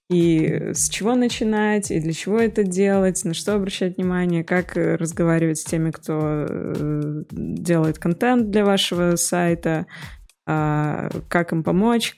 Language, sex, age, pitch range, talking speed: Russian, female, 20-39, 165-200 Hz, 130 wpm